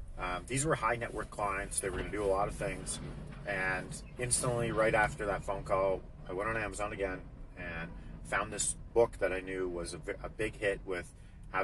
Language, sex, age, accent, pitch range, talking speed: English, male, 40-59, American, 90-125 Hz, 215 wpm